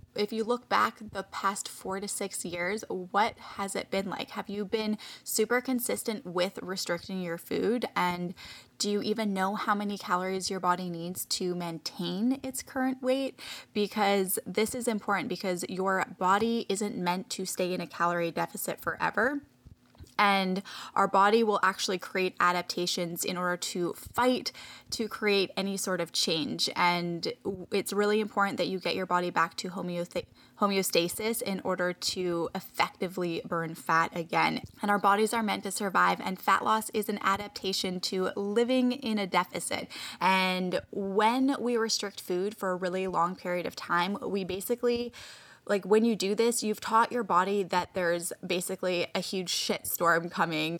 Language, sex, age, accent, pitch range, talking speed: English, female, 10-29, American, 180-215 Hz, 165 wpm